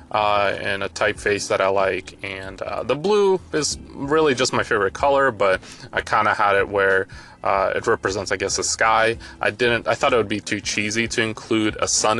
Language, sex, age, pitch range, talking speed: English, male, 20-39, 100-115 Hz, 215 wpm